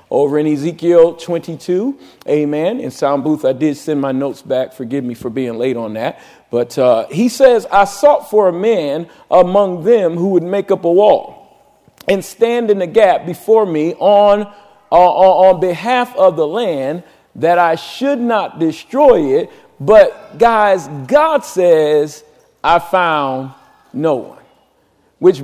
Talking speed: 160 wpm